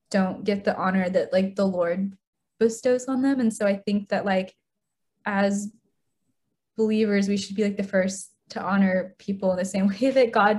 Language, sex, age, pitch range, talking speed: English, female, 10-29, 190-220 Hz, 195 wpm